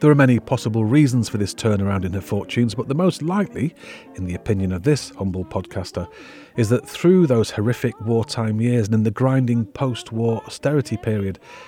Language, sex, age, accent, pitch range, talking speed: English, male, 40-59, British, 105-130 Hz, 185 wpm